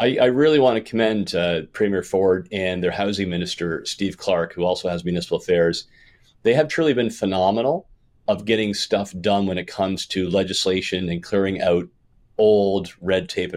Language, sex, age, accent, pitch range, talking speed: English, male, 40-59, American, 95-115 Hz, 170 wpm